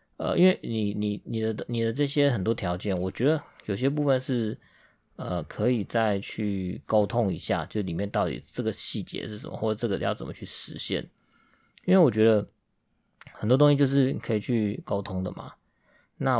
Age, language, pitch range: 20-39, Chinese, 100-125 Hz